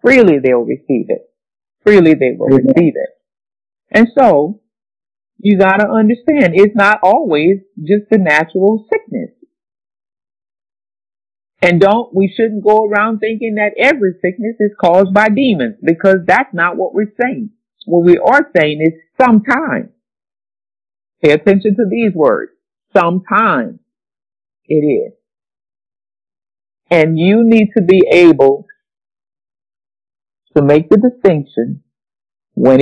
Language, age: English, 50-69